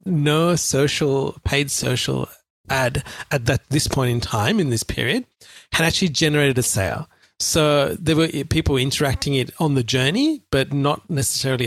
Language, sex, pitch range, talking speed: English, male, 120-150 Hz, 155 wpm